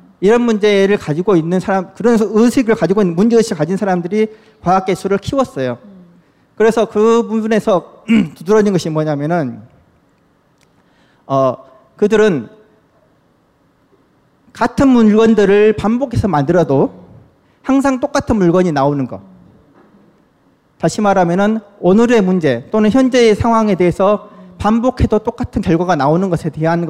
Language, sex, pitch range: Korean, male, 165-225 Hz